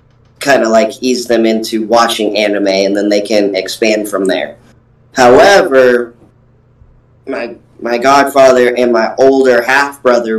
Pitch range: 115-130 Hz